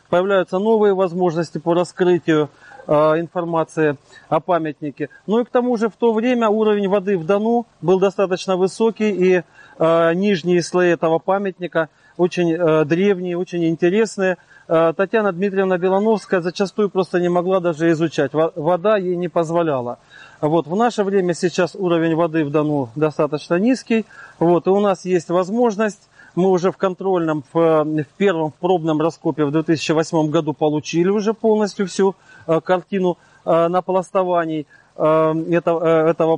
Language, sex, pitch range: Russian, male, 165-195 Hz